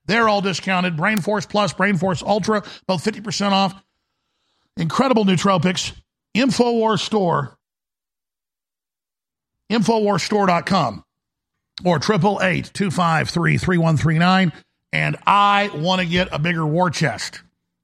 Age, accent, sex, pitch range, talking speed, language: 50-69, American, male, 170-210 Hz, 90 wpm, English